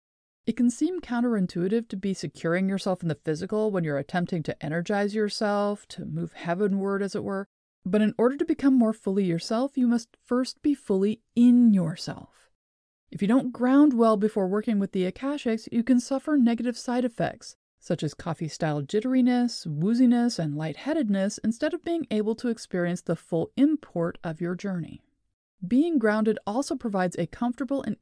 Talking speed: 170 wpm